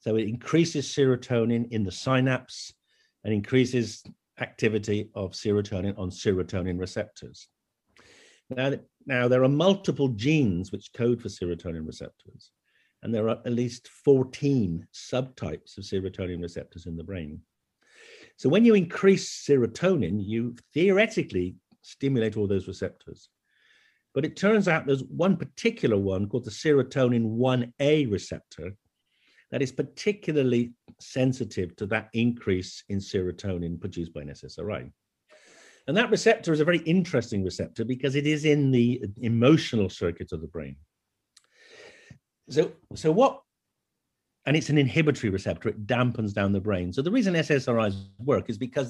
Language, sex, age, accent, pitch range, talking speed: English, male, 50-69, British, 100-140 Hz, 140 wpm